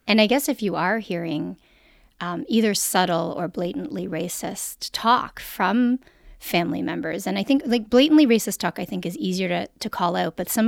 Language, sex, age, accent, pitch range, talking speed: English, female, 30-49, American, 185-245 Hz, 190 wpm